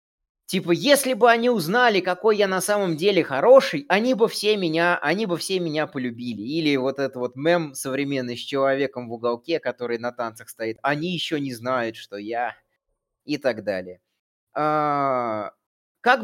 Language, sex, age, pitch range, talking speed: Russian, male, 20-39, 125-195 Hz, 150 wpm